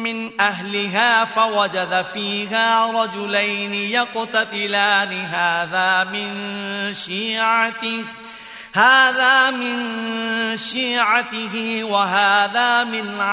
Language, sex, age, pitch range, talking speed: Arabic, male, 30-49, 205-240 Hz, 65 wpm